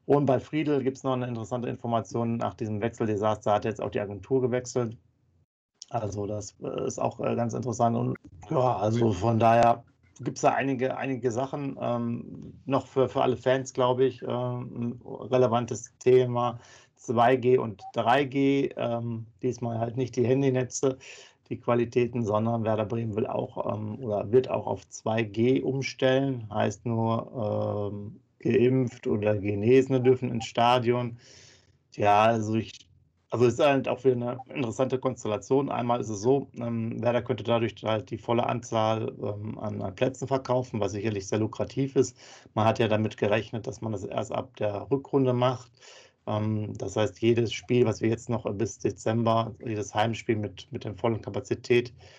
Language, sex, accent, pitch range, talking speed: German, male, German, 110-130 Hz, 160 wpm